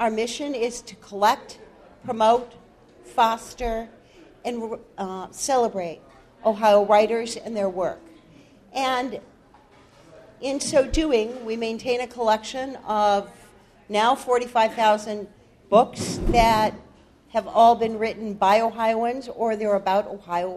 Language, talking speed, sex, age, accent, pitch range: English, 110 wpm, female, 50-69, American, 195-245 Hz